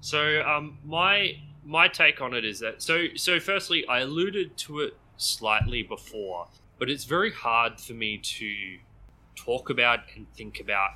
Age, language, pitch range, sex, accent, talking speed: 20-39, English, 110-135 Hz, male, Australian, 165 wpm